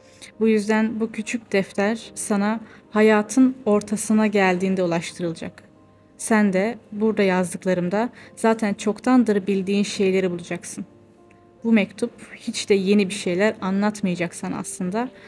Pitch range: 185-220 Hz